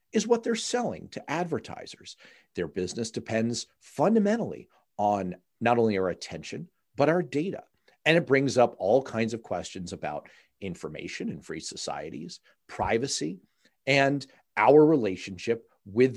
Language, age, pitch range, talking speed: English, 40-59, 115-180 Hz, 135 wpm